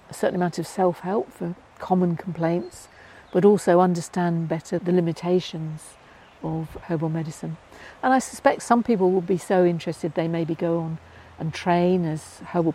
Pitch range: 165-190 Hz